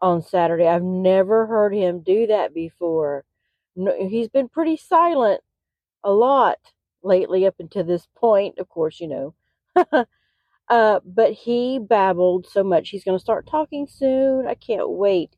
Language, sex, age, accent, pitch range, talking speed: English, female, 40-59, American, 165-215 Hz, 150 wpm